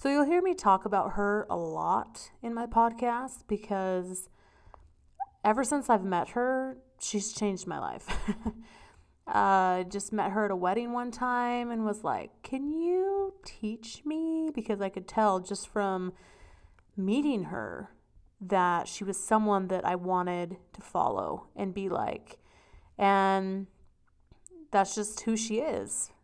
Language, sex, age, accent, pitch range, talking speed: English, female, 30-49, American, 195-245 Hz, 145 wpm